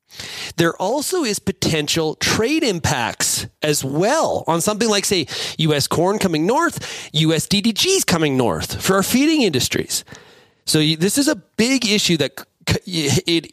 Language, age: English, 30-49